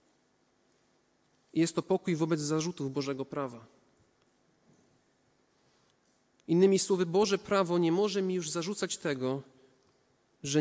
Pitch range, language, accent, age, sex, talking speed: 140-175 Hz, Polish, native, 40-59, male, 100 wpm